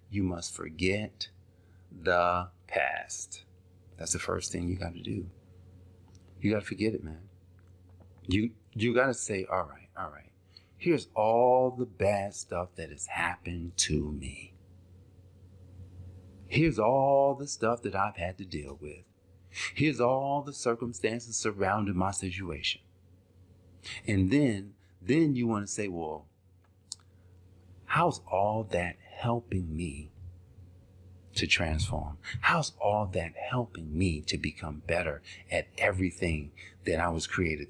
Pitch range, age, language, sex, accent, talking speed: 90-105 Hz, 40-59, English, male, American, 135 wpm